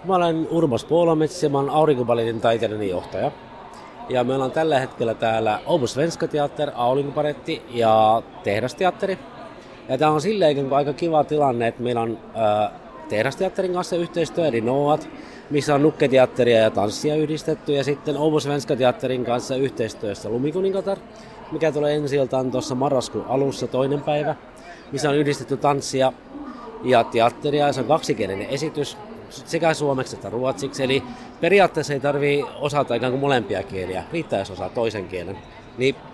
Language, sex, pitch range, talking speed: Finnish, male, 125-155 Hz, 140 wpm